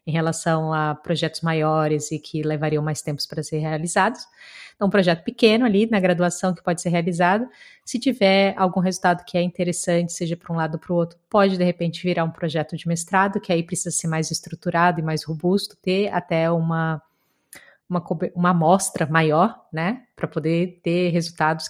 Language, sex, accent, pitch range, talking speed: Portuguese, female, Brazilian, 170-205 Hz, 190 wpm